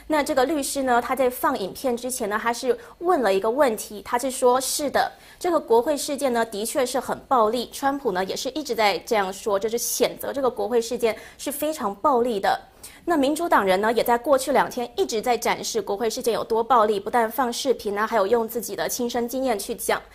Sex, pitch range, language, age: female, 225-290 Hz, Chinese, 20-39